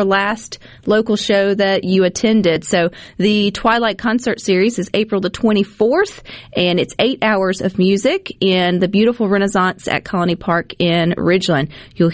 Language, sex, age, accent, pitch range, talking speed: English, female, 40-59, American, 175-225 Hz, 155 wpm